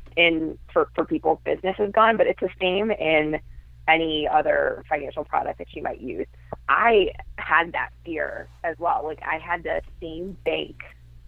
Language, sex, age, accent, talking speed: English, female, 20-39, American, 165 wpm